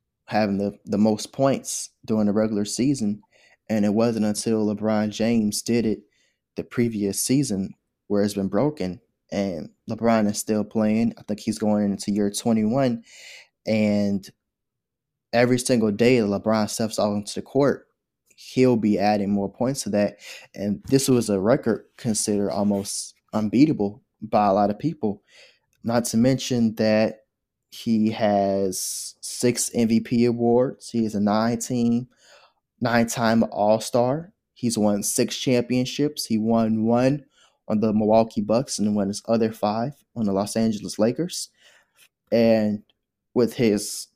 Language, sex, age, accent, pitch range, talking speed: English, male, 10-29, American, 105-120 Hz, 140 wpm